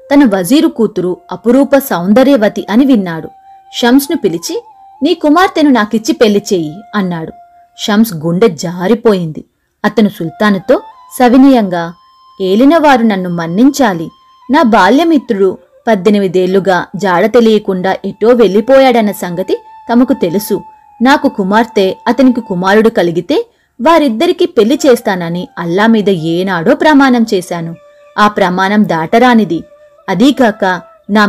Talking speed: 100 wpm